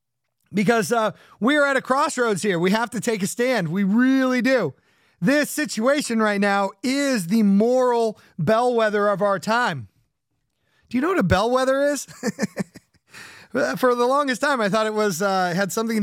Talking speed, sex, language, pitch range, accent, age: 170 wpm, male, English, 185-235 Hz, American, 30-49